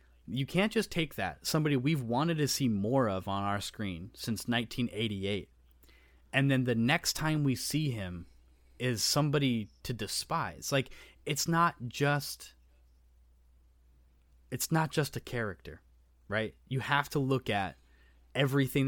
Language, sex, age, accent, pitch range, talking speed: English, male, 20-39, American, 90-130 Hz, 145 wpm